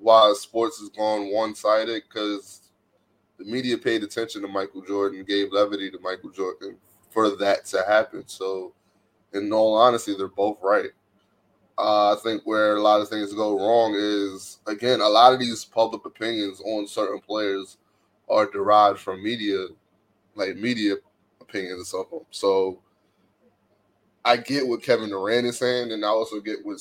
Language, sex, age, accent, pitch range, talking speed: English, male, 20-39, American, 100-120 Hz, 165 wpm